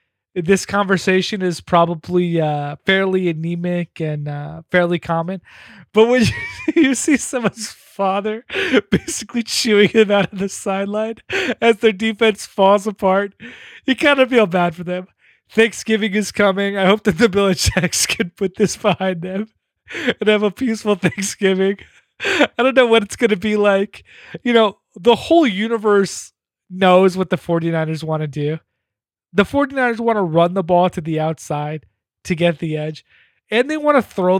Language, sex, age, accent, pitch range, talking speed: English, male, 30-49, American, 175-220 Hz, 165 wpm